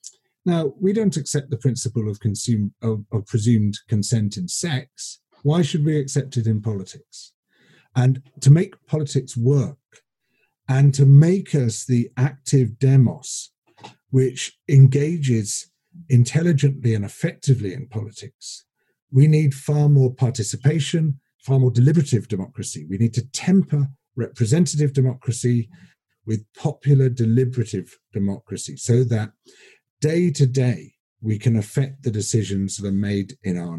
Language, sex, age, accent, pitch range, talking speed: English, male, 40-59, British, 105-140 Hz, 125 wpm